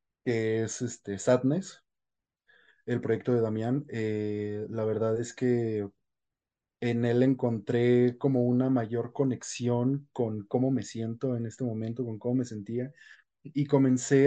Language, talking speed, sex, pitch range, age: Spanish, 140 wpm, male, 115-140 Hz, 20-39